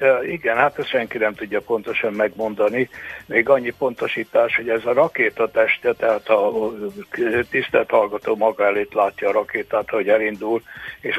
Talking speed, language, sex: 145 wpm, Hungarian, male